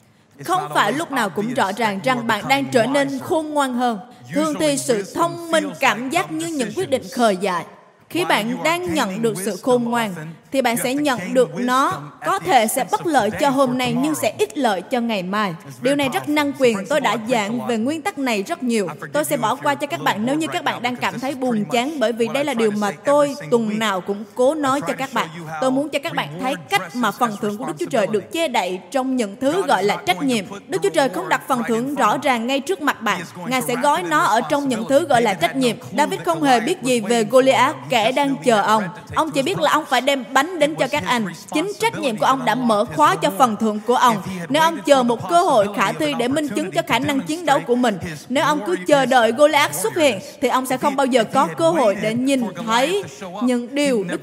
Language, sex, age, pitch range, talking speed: Vietnamese, female, 20-39, 225-290 Hz, 250 wpm